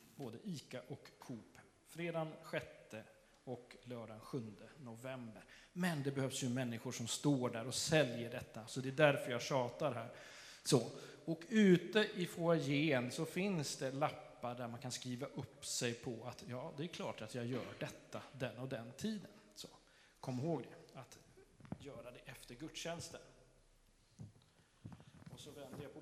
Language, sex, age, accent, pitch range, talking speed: Swedish, male, 30-49, native, 125-165 Hz, 155 wpm